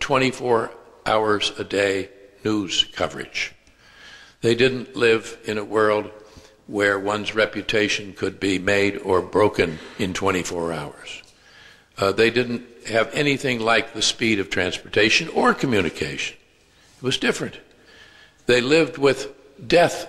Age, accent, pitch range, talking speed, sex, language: 60-79, American, 105-145 Hz, 125 wpm, male, English